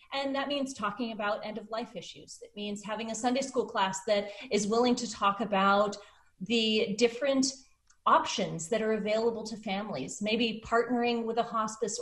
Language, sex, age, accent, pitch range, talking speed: English, female, 30-49, American, 195-235 Hz, 165 wpm